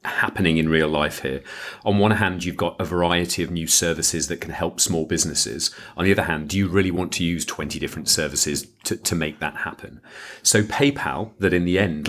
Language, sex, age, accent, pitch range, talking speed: English, male, 40-59, British, 85-110 Hz, 220 wpm